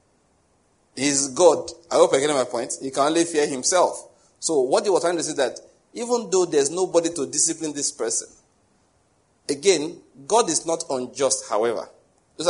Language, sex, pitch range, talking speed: English, male, 130-200 Hz, 180 wpm